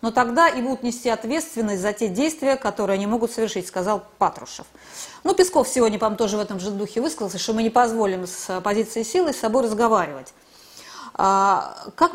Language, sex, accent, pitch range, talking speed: Russian, female, native, 210-275 Hz, 185 wpm